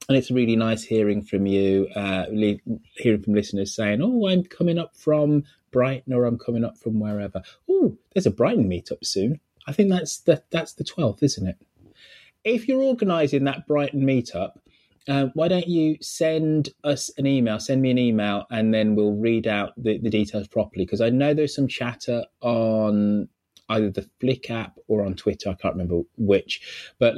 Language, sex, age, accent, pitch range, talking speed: English, male, 20-39, British, 100-140 Hz, 185 wpm